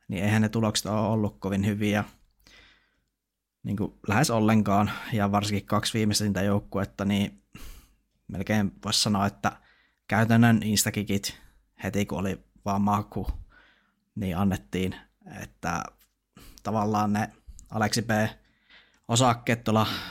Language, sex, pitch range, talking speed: Finnish, male, 100-110 Hz, 105 wpm